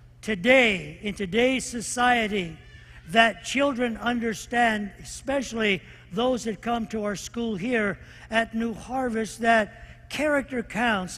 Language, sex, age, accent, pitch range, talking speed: English, male, 60-79, American, 200-235 Hz, 115 wpm